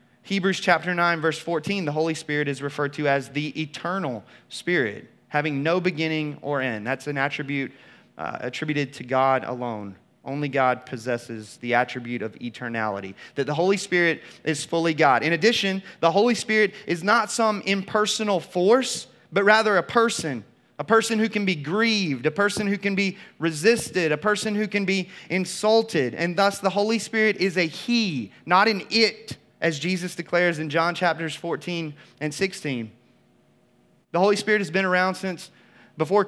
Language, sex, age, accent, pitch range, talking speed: English, male, 30-49, American, 155-200 Hz, 170 wpm